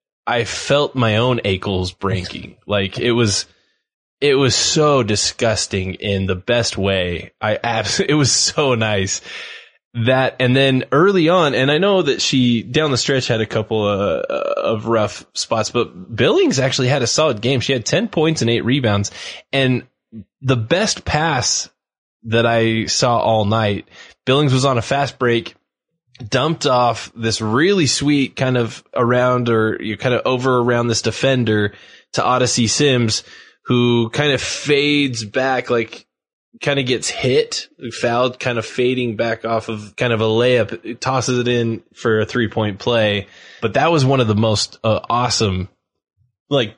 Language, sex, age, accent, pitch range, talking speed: English, male, 20-39, American, 110-130 Hz, 170 wpm